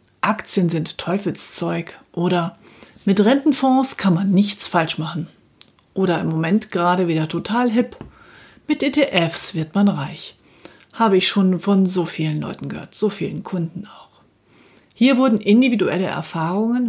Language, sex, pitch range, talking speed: German, female, 170-225 Hz, 140 wpm